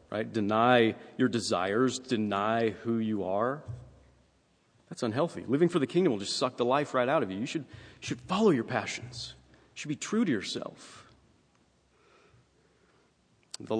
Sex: male